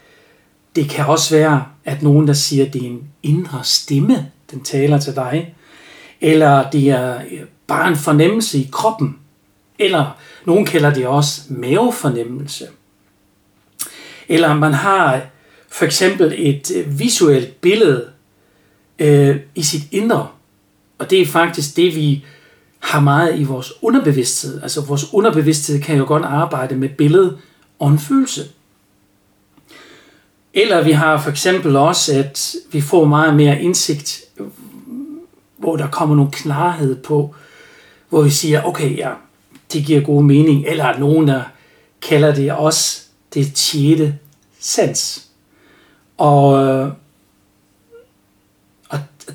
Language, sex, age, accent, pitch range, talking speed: Danish, male, 60-79, native, 140-165 Hz, 125 wpm